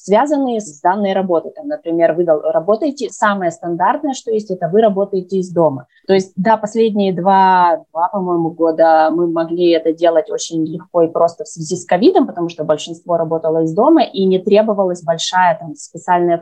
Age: 20-39